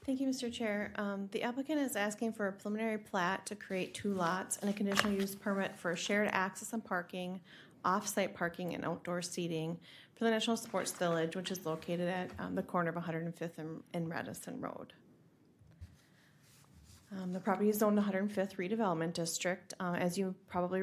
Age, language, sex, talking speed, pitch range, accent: 30-49, English, female, 180 wpm, 170-200 Hz, American